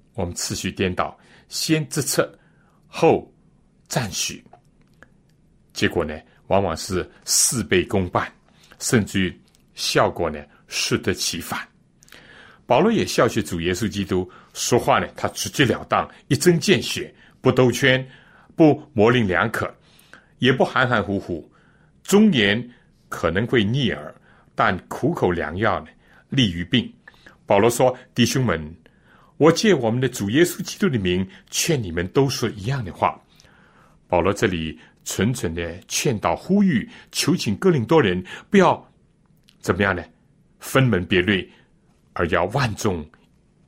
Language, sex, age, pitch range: Chinese, male, 60-79, 95-140 Hz